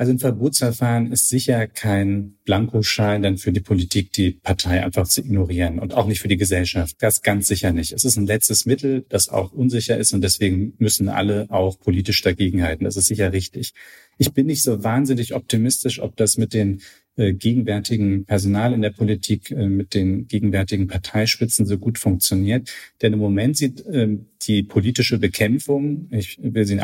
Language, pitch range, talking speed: German, 100-115 Hz, 185 wpm